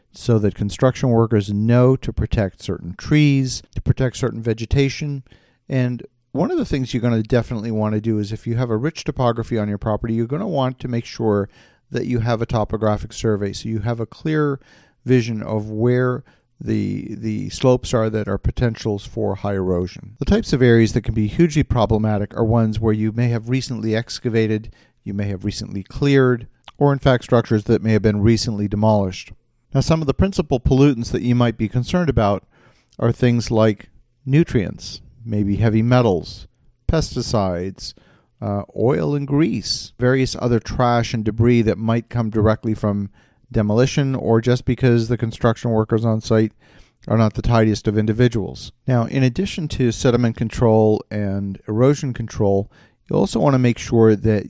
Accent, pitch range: American, 110-125 Hz